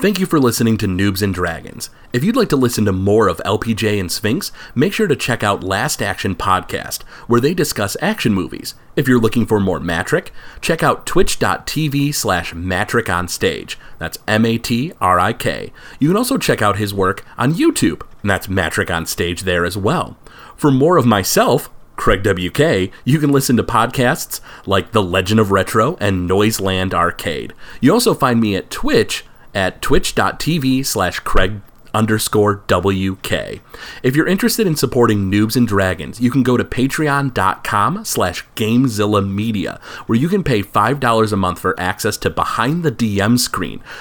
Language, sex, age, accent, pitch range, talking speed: English, male, 30-49, American, 95-130 Hz, 180 wpm